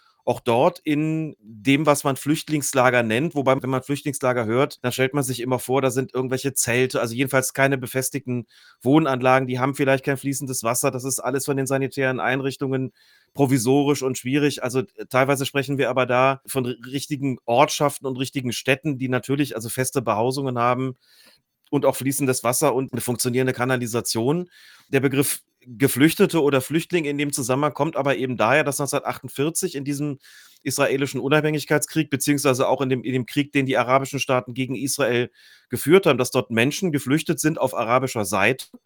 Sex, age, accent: male, 30-49, German